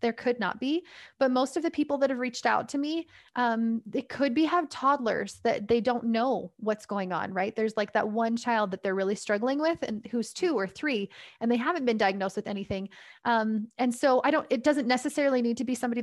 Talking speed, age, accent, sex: 235 wpm, 20-39, American, female